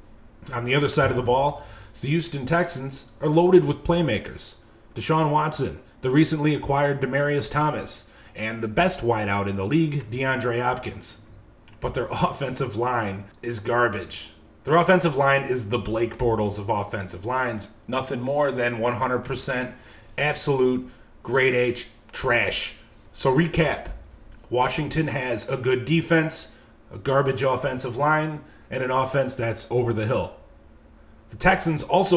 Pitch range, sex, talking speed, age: 115-150 Hz, male, 140 wpm, 30-49